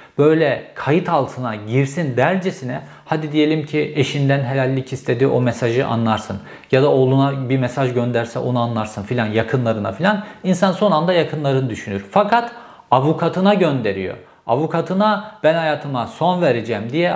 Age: 40-59